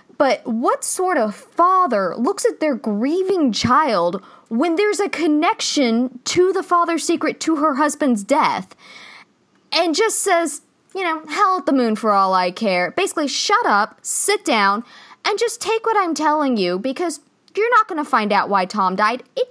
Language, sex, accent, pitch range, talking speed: English, female, American, 215-335 Hz, 180 wpm